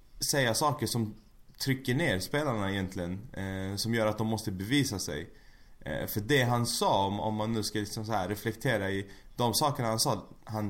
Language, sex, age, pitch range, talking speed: Swedish, male, 20-39, 100-125 Hz, 195 wpm